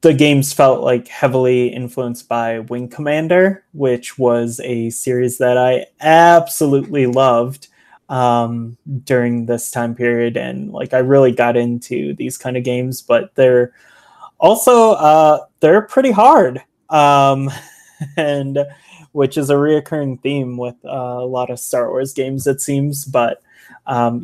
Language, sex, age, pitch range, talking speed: English, male, 20-39, 120-145 Hz, 145 wpm